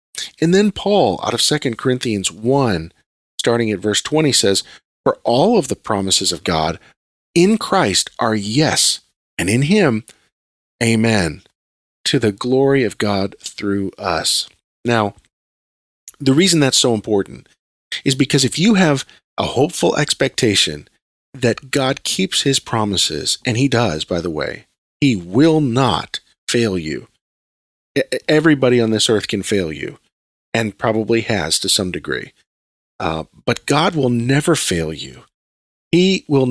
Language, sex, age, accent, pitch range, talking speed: English, male, 40-59, American, 95-140 Hz, 145 wpm